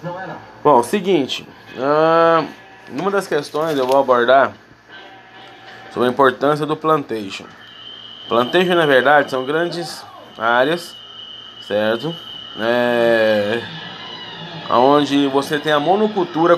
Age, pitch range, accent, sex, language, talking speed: 20-39, 130-165 Hz, Brazilian, male, Portuguese, 100 wpm